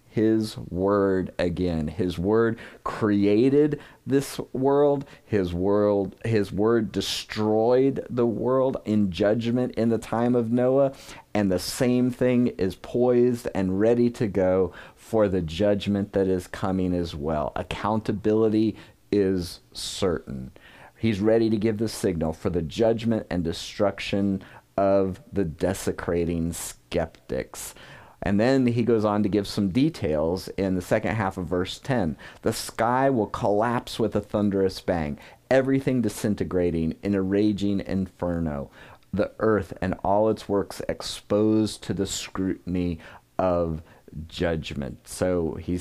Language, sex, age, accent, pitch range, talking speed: English, male, 40-59, American, 90-115 Hz, 130 wpm